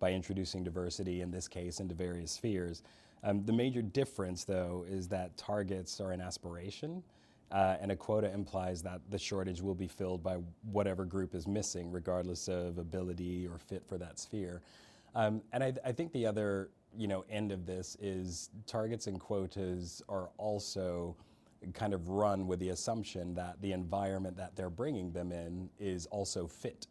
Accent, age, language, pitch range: American, 30-49, English, 90-105 Hz